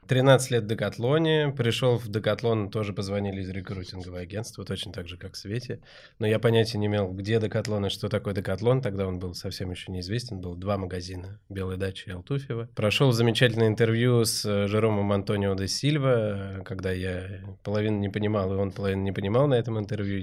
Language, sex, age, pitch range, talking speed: Russian, male, 20-39, 95-115 Hz, 185 wpm